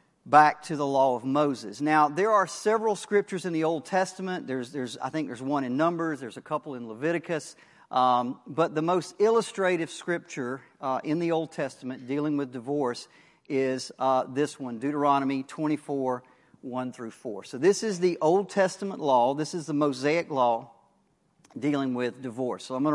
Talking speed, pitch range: 180 wpm, 140-175 Hz